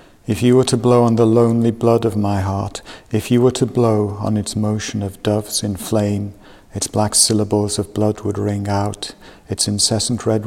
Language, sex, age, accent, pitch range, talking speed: English, male, 50-69, British, 105-115 Hz, 200 wpm